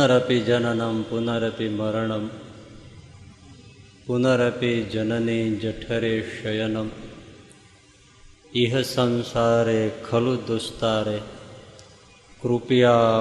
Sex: male